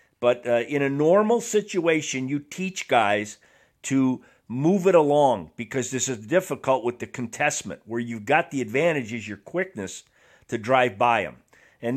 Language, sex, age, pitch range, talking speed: English, male, 50-69, 110-145 Hz, 160 wpm